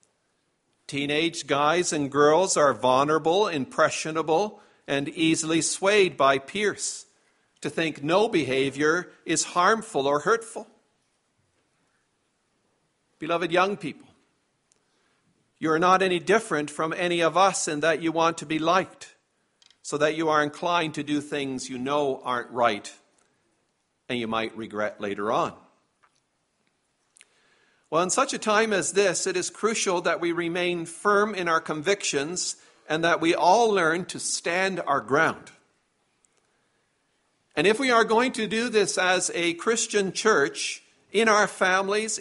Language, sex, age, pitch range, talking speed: English, male, 50-69, 155-200 Hz, 140 wpm